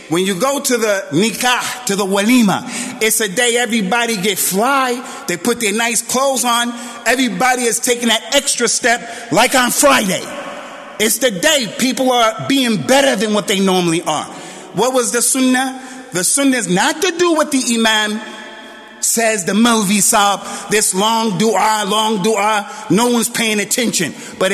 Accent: American